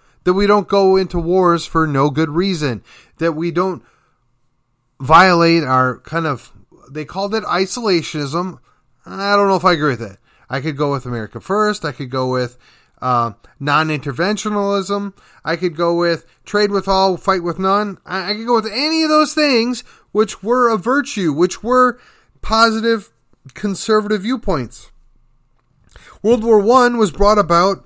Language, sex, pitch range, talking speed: English, male, 135-200 Hz, 160 wpm